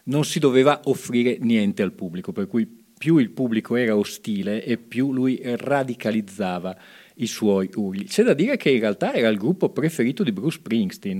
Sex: male